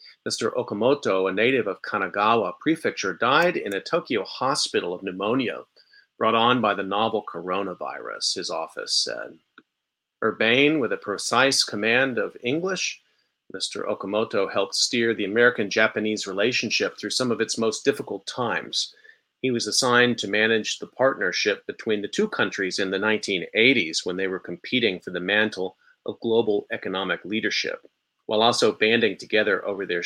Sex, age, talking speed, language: male, 40-59, 150 wpm, English